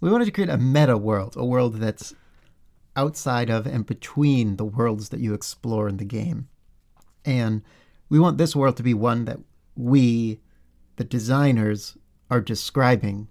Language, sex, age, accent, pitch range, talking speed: English, male, 40-59, American, 110-135 Hz, 160 wpm